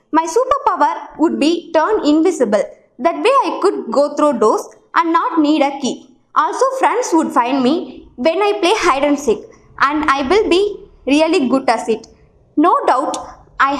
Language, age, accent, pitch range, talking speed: Tamil, 20-39, native, 260-390 Hz, 180 wpm